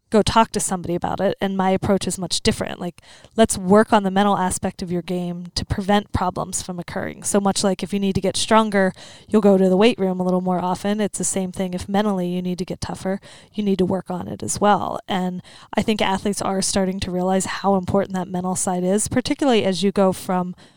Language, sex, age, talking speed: English, female, 20-39, 245 wpm